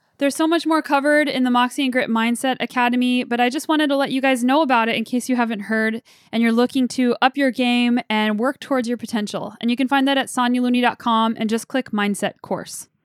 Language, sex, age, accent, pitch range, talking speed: English, female, 10-29, American, 230-275 Hz, 240 wpm